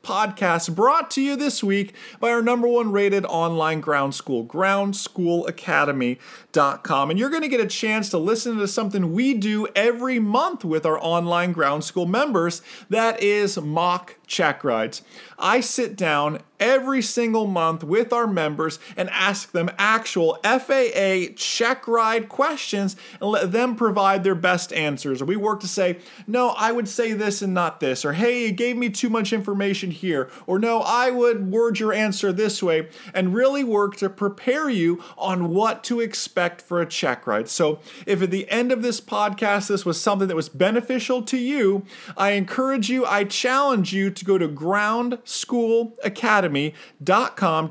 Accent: American